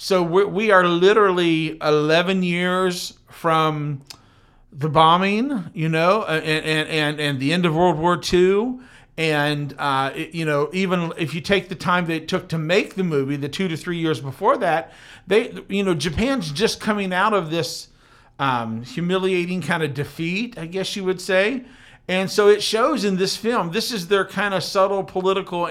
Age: 50-69